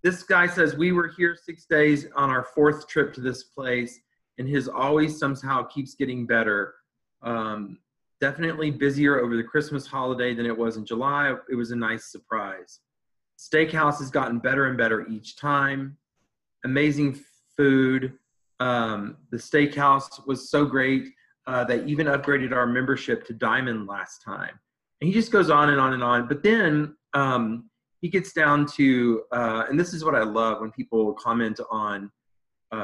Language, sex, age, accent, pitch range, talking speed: English, male, 30-49, American, 115-145 Hz, 170 wpm